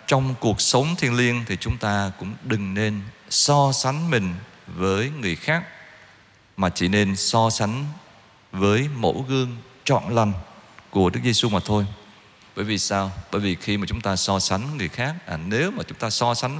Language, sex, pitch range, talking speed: Vietnamese, male, 105-150 Hz, 190 wpm